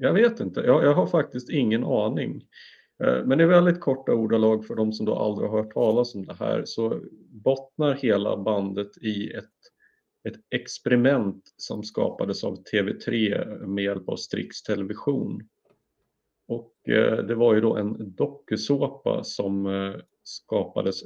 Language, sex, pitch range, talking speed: Swedish, male, 105-150 Hz, 140 wpm